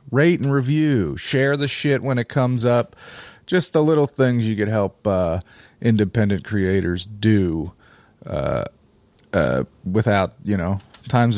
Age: 30-49